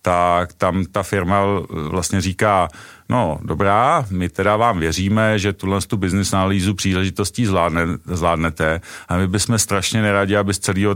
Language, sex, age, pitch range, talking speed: Czech, male, 40-59, 85-100 Hz, 155 wpm